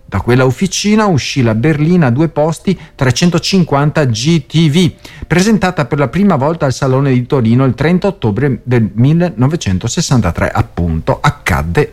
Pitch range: 105-150 Hz